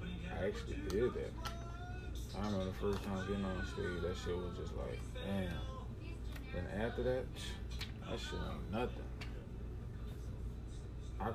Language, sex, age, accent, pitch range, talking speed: English, male, 20-39, American, 95-105 Hz, 135 wpm